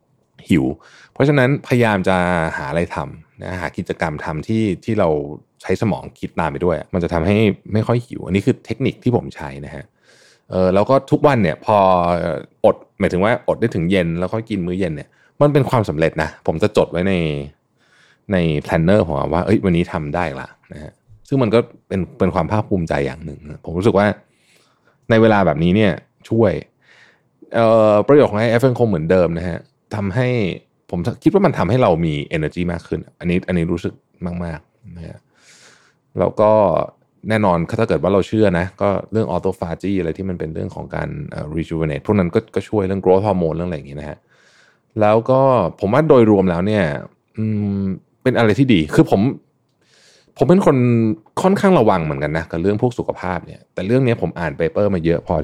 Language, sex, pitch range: Thai, male, 85-110 Hz